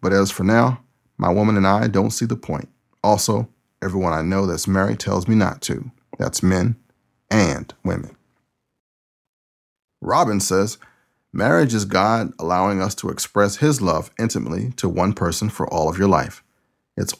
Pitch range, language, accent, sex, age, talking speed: 95-110 Hz, English, American, male, 40-59, 165 wpm